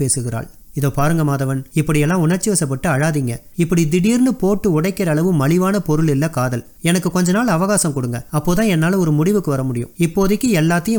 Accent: native